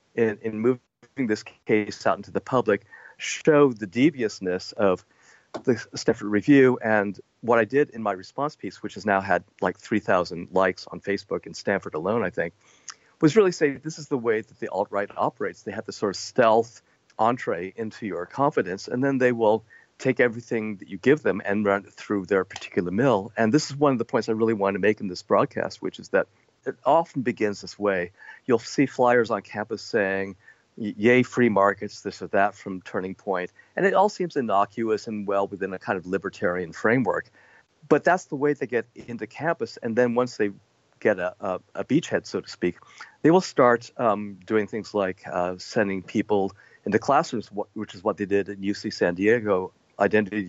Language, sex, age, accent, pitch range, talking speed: English, male, 50-69, American, 100-125 Hz, 200 wpm